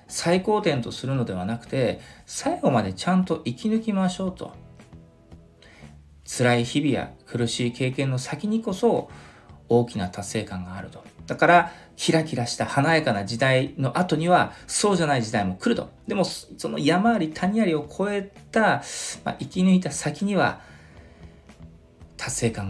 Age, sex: 40-59, male